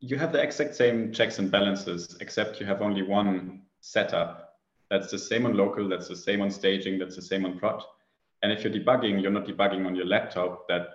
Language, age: English, 30-49